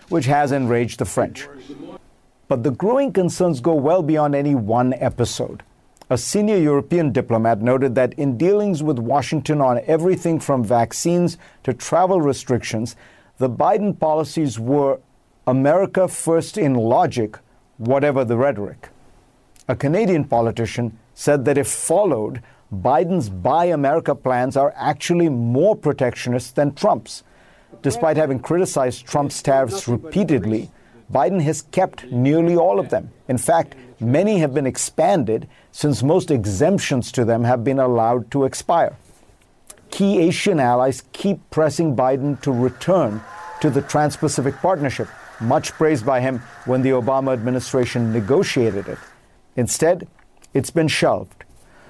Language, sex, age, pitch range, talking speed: English, male, 50-69, 125-155 Hz, 135 wpm